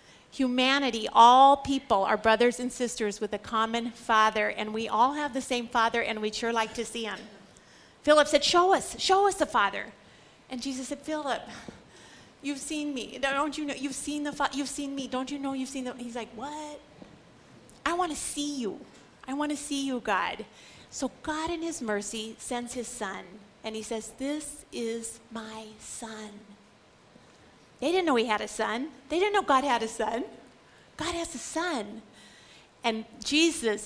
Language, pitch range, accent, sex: English, 220-275 Hz, American, female